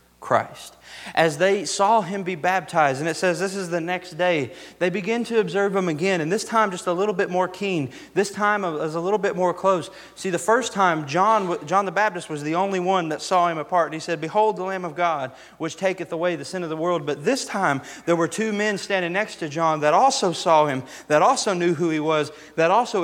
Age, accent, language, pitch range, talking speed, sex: 30-49, American, English, 165-200 Hz, 240 wpm, male